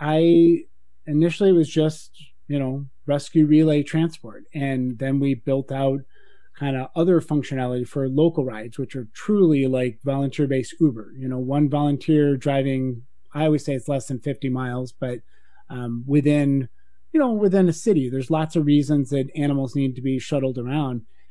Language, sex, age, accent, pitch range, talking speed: English, male, 30-49, American, 135-160 Hz, 170 wpm